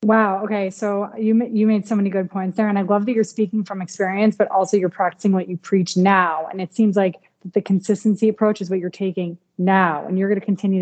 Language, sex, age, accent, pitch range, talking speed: English, female, 20-39, American, 180-210 Hz, 245 wpm